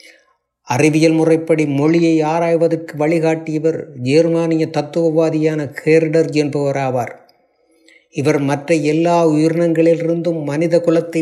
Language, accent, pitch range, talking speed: Tamil, native, 140-165 Hz, 75 wpm